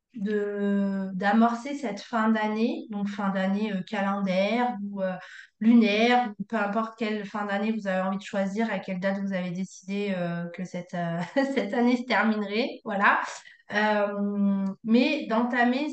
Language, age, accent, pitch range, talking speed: French, 20-39, French, 200-245 Hz, 155 wpm